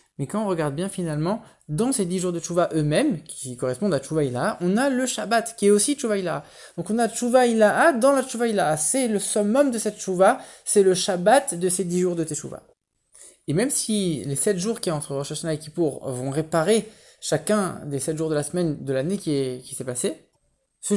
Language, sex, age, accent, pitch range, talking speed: English, male, 20-39, French, 155-205 Hz, 220 wpm